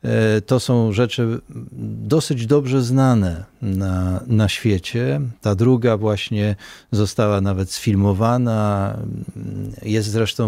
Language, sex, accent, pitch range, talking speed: Polish, male, native, 100-115 Hz, 95 wpm